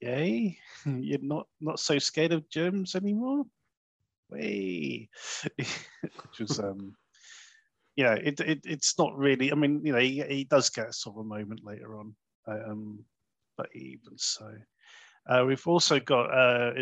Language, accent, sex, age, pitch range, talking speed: English, British, male, 30-49, 110-150 Hz, 155 wpm